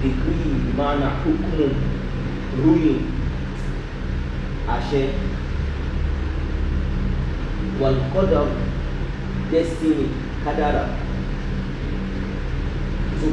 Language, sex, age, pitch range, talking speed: English, male, 30-49, 65-70 Hz, 45 wpm